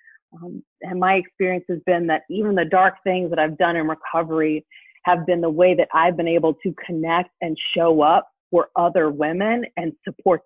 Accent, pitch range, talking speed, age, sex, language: American, 160-190 Hz, 195 wpm, 30-49, female, English